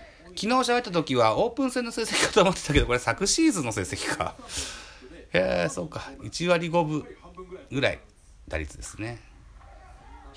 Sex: male